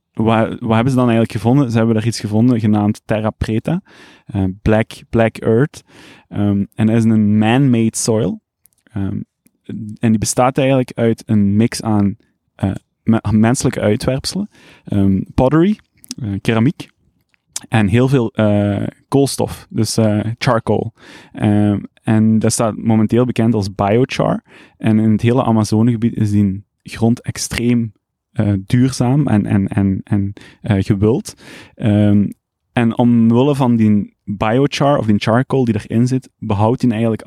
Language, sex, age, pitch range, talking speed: Dutch, male, 20-39, 105-125 Hz, 140 wpm